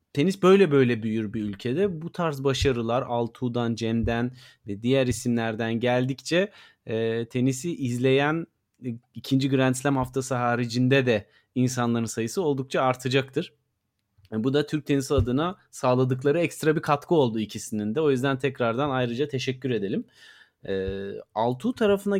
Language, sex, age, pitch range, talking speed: Turkish, male, 30-49, 125-160 Hz, 135 wpm